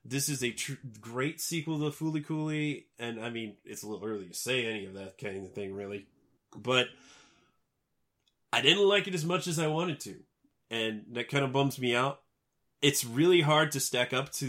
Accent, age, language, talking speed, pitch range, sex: American, 30-49, English, 205 wpm, 120-155 Hz, male